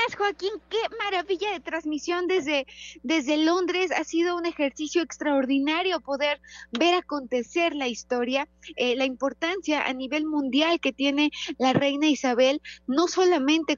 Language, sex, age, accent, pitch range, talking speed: Spanish, female, 20-39, Mexican, 225-295 Hz, 135 wpm